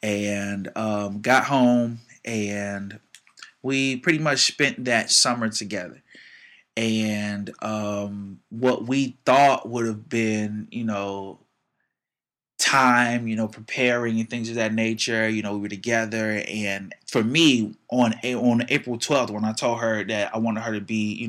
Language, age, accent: English, 20-39, American